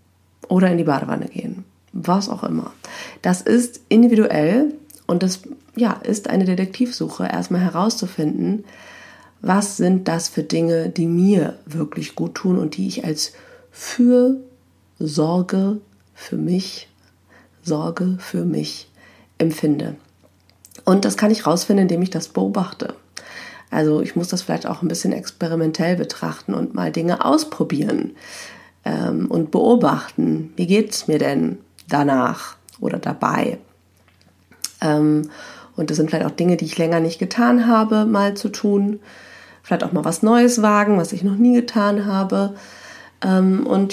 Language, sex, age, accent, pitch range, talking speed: German, female, 40-59, German, 165-220 Hz, 135 wpm